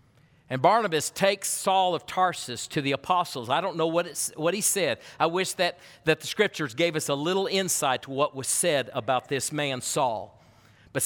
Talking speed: 200 wpm